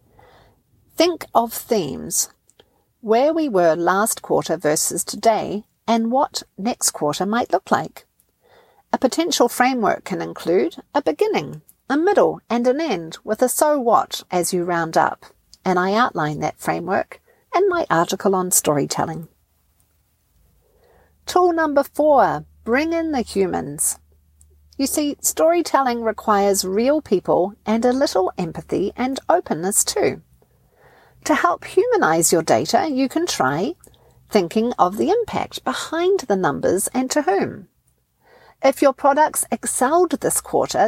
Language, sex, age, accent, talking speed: English, female, 50-69, Australian, 135 wpm